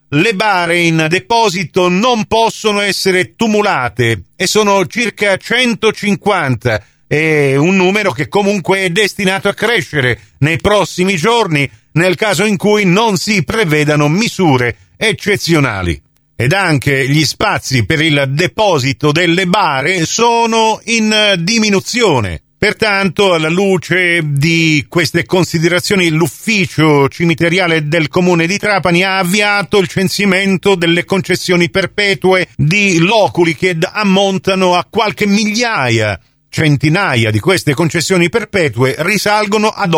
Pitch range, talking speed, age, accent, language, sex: 155-200 Hz, 115 wpm, 40-59, native, Italian, male